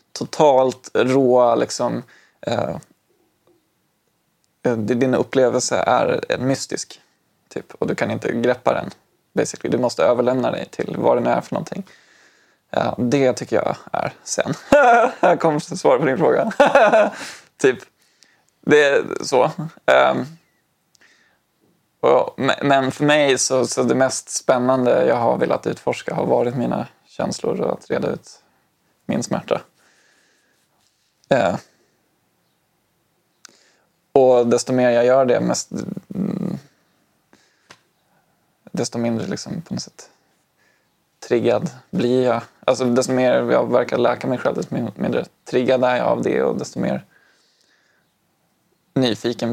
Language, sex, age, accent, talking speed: English, male, 20-39, Swedish, 125 wpm